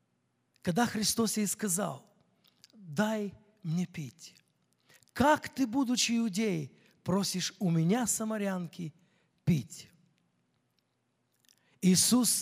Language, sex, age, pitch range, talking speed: English, male, 50-69, 185-255 Hz, 80 wpm